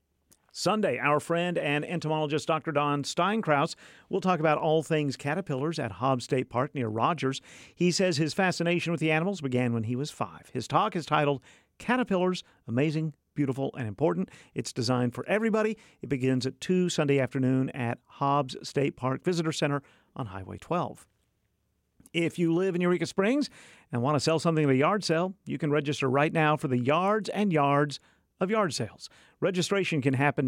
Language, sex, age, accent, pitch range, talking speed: English, male, 50-69, American, 130-175 Hz, 180 wpm